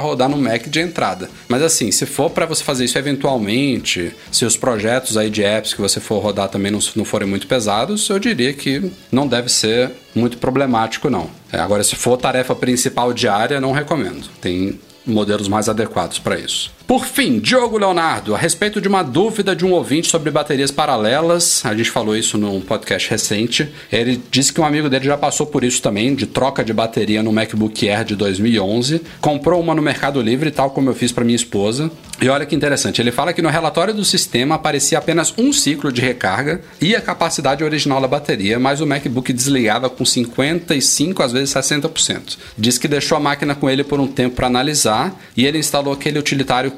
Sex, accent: male, Brazilian